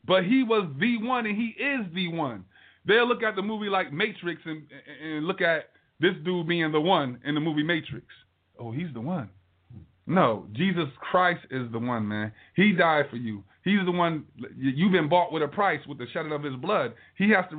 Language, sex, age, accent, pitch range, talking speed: English, male, 30-49, American, 125-180 Hz, 215 wpm